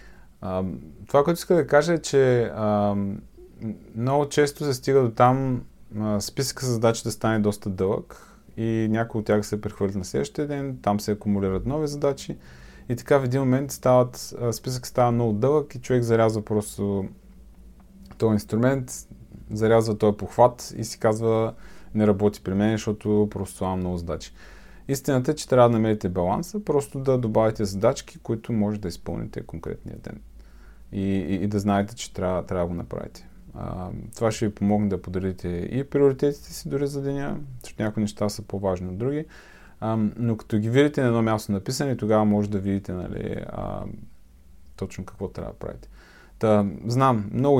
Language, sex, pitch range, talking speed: Bulgarian, male, 100-125 Hz, 175 wpm